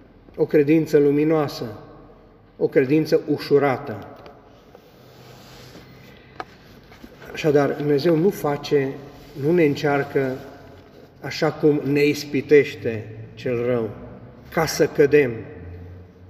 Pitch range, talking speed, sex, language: 115-145 Hz, 80 wpm, male, Romanian